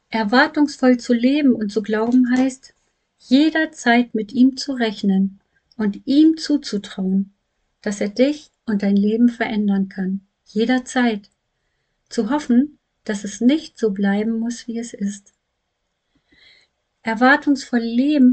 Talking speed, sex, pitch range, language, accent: 120 wpm, female, 205-255 Hz, German, German